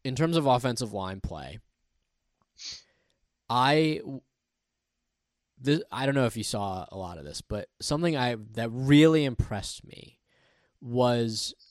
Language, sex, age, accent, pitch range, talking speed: English, male, 20-39, American, 105-130 Hz, 135 wpm